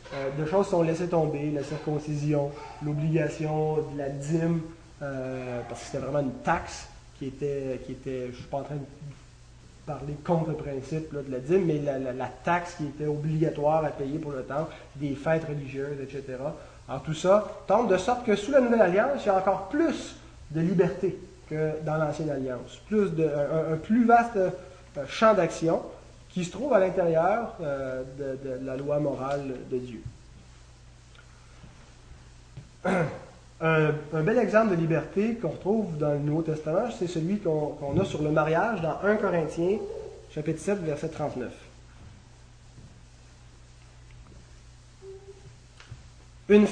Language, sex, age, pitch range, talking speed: French, male, 30-49, 135-180 Hz, 160 wpm